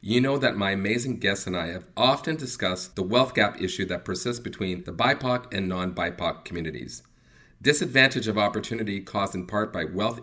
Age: 40-59